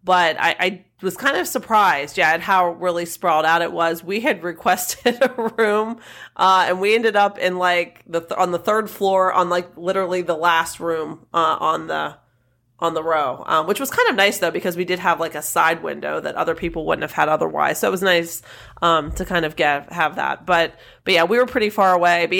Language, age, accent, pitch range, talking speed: English, 30-49, American, 165-190 Hz, 235 wpm